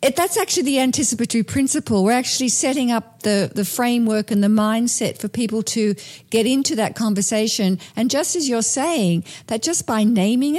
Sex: female